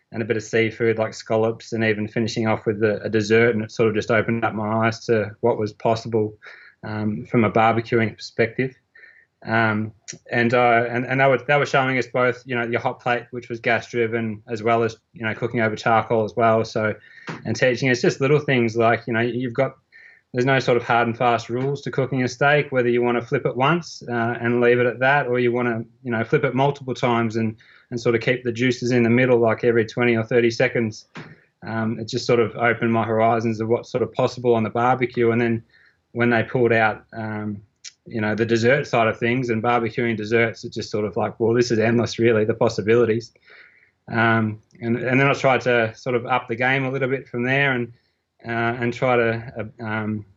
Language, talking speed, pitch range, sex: English, 235 wpm, 115-125 Hz, male